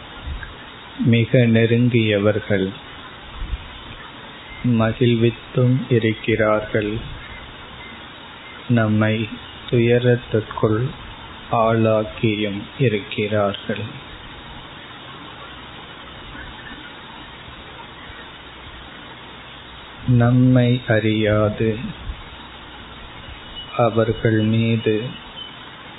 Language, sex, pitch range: Tamil, male, 105-120 Hz